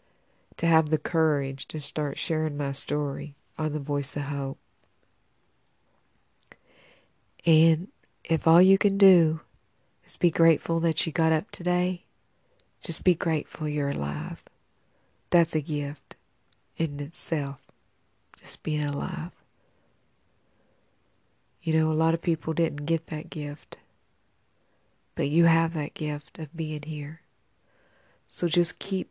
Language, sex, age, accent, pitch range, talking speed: English, female, 50-69, American, 145-170 Hz, 130 wpm